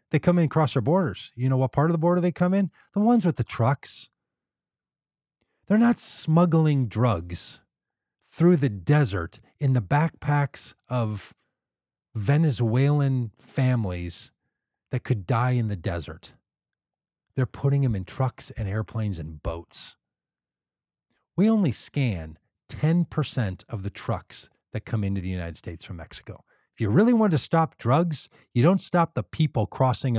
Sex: male